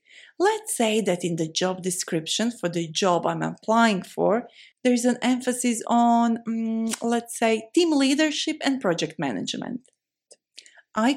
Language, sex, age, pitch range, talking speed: Amharic, female, 30-49, 185-245 Hz, 145 wpm